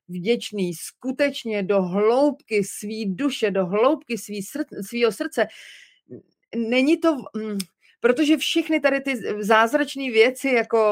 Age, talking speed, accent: 30-49, 115 wpm, native